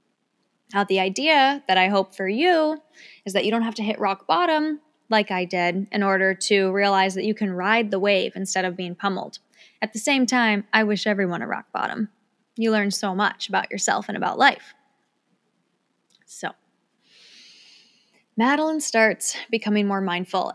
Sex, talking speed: female, 170 wpm